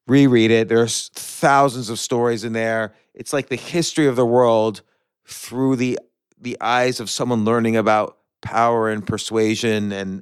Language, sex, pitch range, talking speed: English, male, 105-125 Hz, 160 wpm